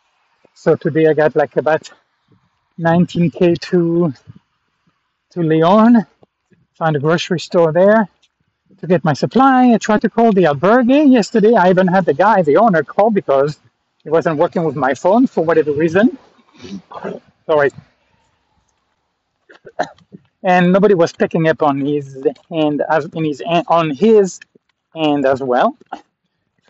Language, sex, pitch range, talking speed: English, male, 150-210 Hz, 140 wpm